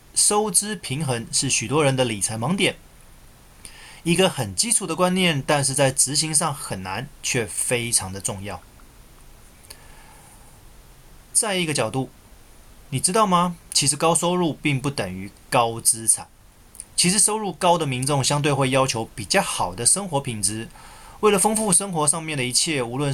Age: 20-39